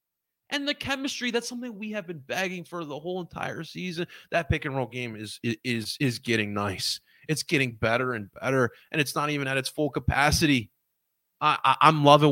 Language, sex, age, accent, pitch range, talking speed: English, male, 30-49, American, 140-215 Hz, 190 wpm